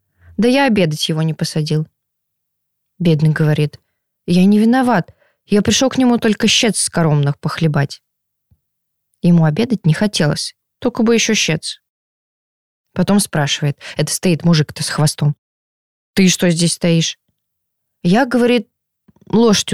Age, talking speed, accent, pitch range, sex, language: 20-39, 130 wpm, native, 155-205 Hz, female, Russian